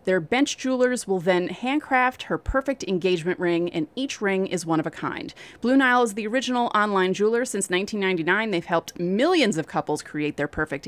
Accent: American